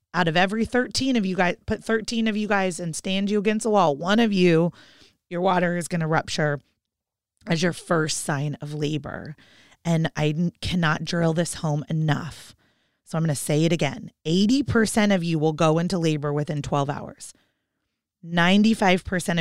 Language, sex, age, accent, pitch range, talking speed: English, female, 30-49, American, 145-180 Hz, 180 wpm